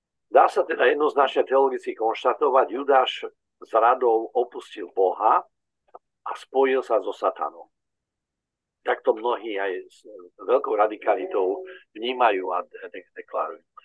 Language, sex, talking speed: Slovak, male, 105 wpm